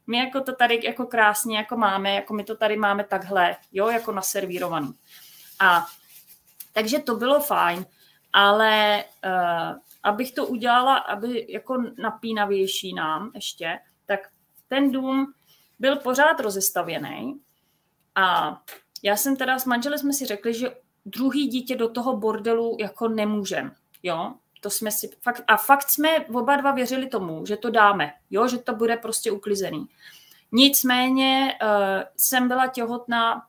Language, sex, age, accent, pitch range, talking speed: Czech, female, 30-49, native, 195-245 Hz, 145 wpm